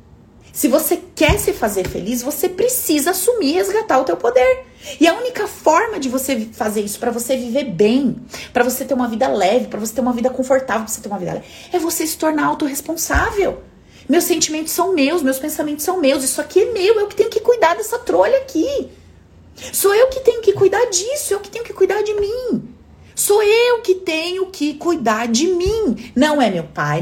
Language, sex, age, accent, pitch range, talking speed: Portuguese, female, 30-49, Brazilian, 205-330 Hz, 210 wpm